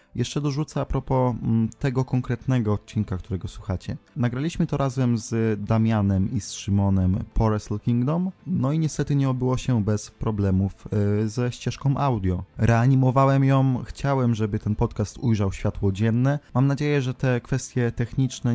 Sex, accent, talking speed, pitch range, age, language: male, native, 150 wpm, 100-125 Hz, 20-39, Polish